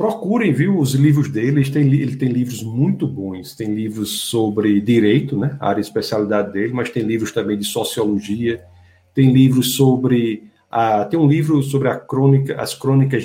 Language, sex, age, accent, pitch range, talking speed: Portuguese, male, 50-69, Brazilian, 110-140 Hz, 170 wpm